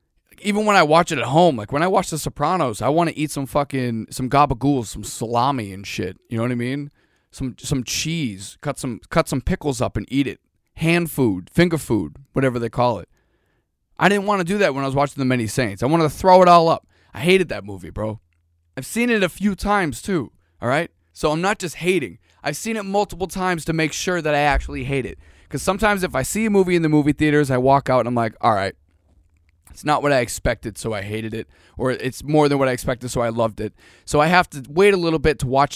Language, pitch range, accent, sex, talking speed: English, 110-160 Hz, American, male, 255 wpm